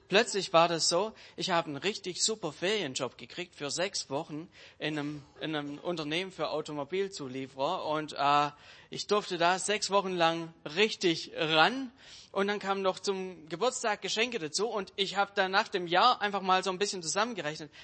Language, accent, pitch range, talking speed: German, German, 150-195 Hz, 170 wpm